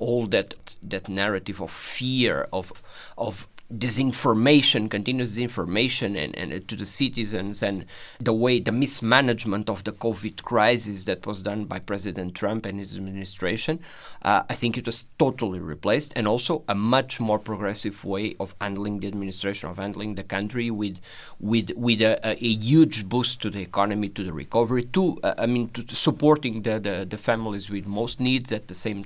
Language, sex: English, male